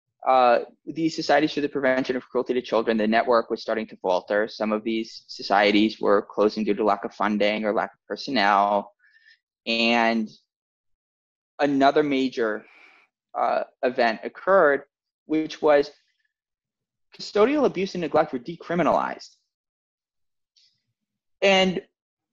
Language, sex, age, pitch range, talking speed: English, male, 20-39, 125-185 Hz, 125 wpm